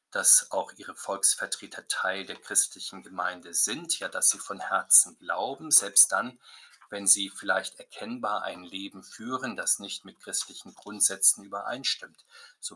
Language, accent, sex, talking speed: German, German, male, 145 wpm